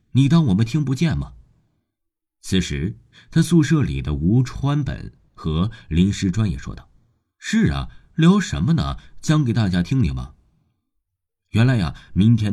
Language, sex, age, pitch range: Chinese, male, 50-69, 85-135 Hz